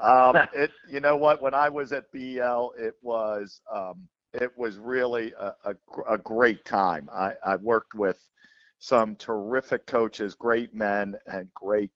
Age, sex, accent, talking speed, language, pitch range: 50-69, male, American, 160 wpm, English, 100-115 Hz